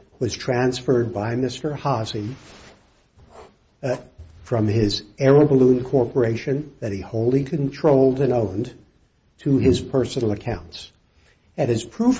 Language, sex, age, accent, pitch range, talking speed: English, male, 60-79, American, 105-135 Hz, 120 wpm